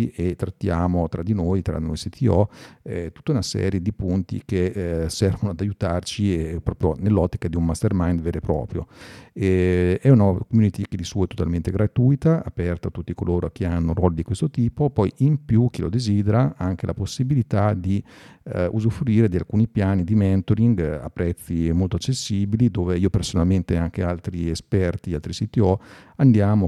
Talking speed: 180 wpm